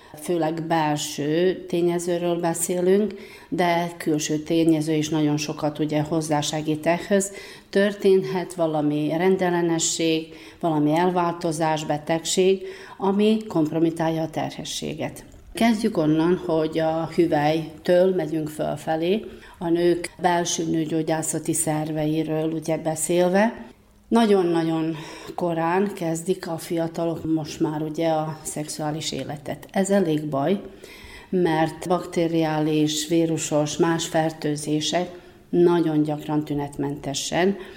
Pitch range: 155-180 Hz